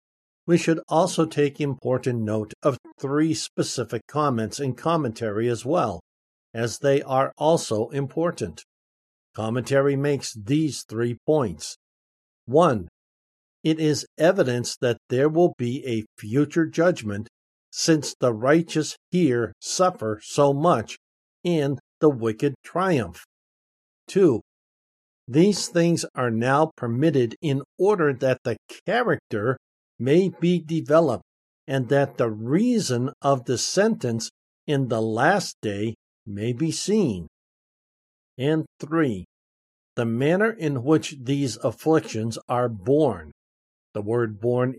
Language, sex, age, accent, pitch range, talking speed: English, male, 60-79, American, 110-155 Hz, 115 wpm